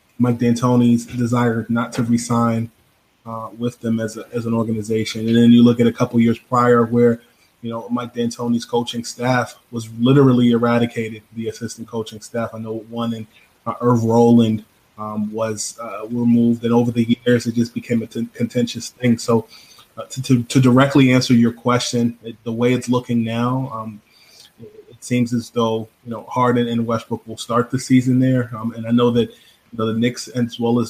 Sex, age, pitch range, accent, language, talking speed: male, 20-39, 110-120 Hz, American, English, 200 wpm